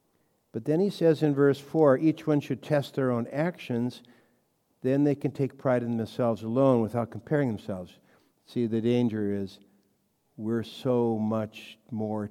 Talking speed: 160 wpm